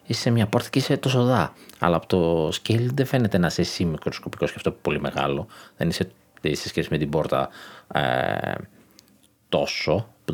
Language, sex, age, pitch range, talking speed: Greek, male, 30-49, 80-105 Hz, 175 wpm